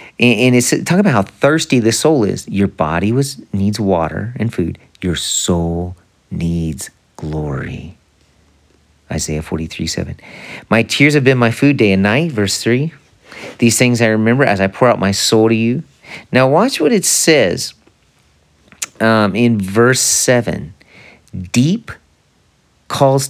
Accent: American